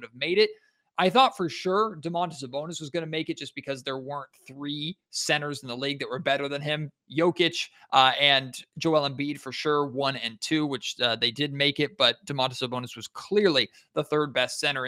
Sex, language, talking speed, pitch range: male, English, 210 wpm, 130-165 Hz